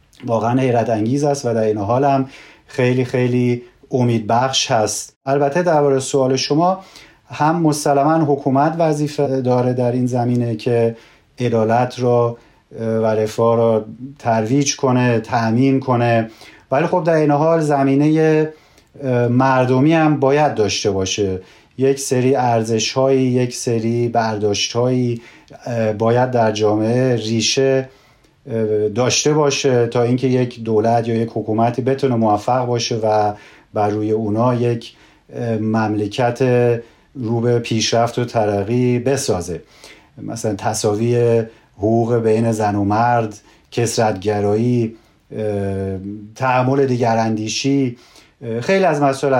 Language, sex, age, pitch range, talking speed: Persian, male, 40-59, 115-135 Hz, 115 wpm